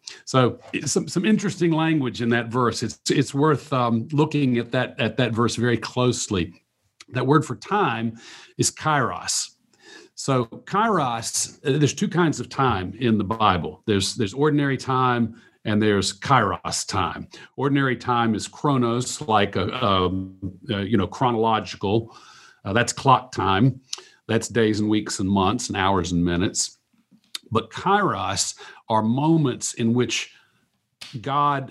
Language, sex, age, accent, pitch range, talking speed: English, male, 50-69, American, 105-130 Hz, 145 wpm